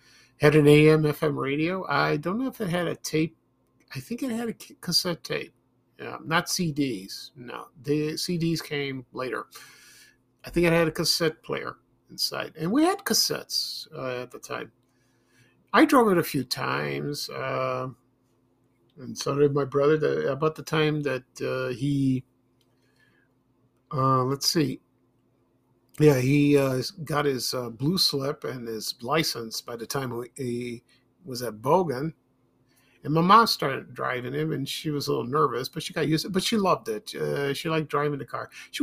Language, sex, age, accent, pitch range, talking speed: English, male, 50-69, American, 130-160 Hz, 170 wpm